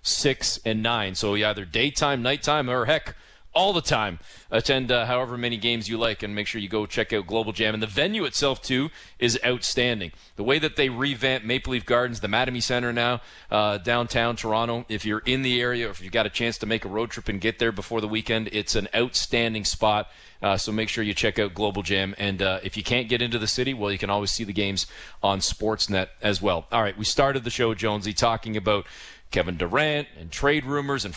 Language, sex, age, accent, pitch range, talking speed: English, male, 40-59, American, 105-130 Hz, 230 wpm